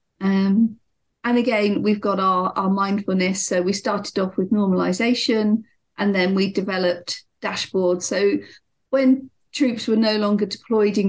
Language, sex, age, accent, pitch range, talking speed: English, female, 40-59, British, 185-220 Hz, 145 wpm